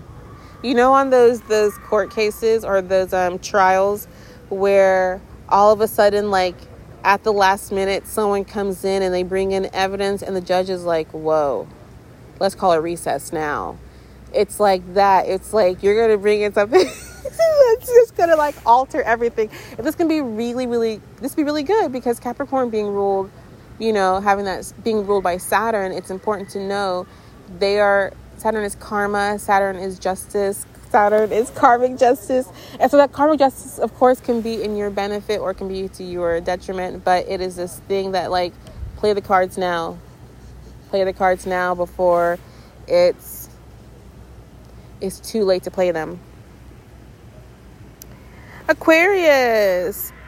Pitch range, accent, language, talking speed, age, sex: 190-235 Hz, American, English, 165 wpm, 30-49, female